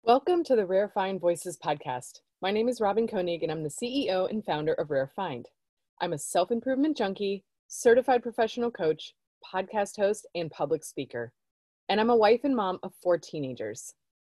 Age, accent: 20-39, American